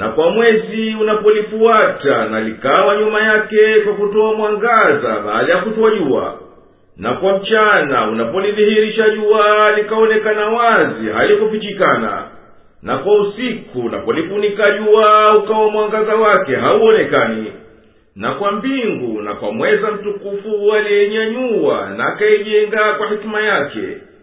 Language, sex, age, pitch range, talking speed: Swahili, male, 50-69, 210-270 Hz, 110 wpm